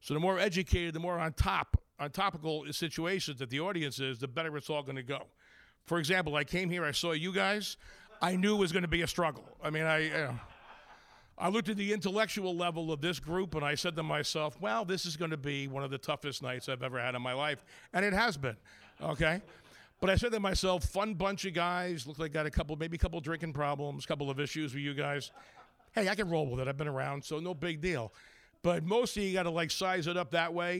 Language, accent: English, American